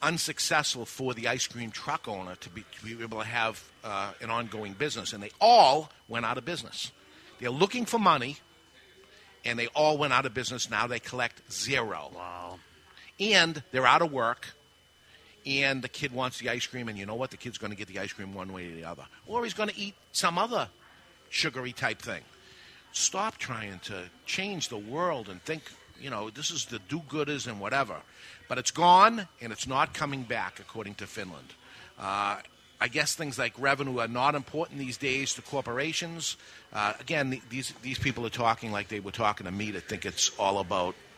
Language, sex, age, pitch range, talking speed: English, male, 50-69, 115-150 Hz, 200 wpm